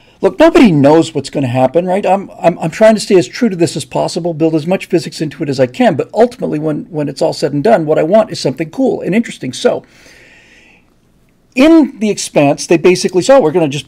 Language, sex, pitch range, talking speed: English, male, 145-195 Hz, 250 wpm